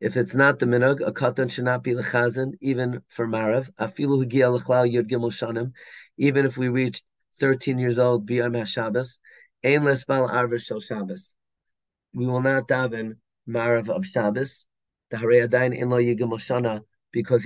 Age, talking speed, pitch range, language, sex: 30-49, 125 wpm, 120-140 Hz, English, male